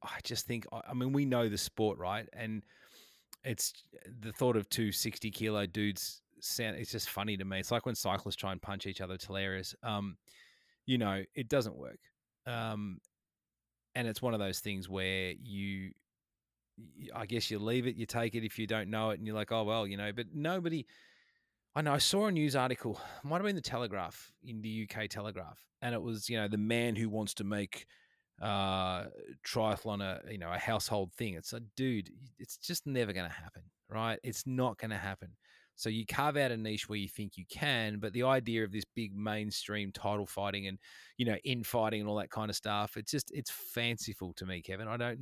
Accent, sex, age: Australian, male, 30-49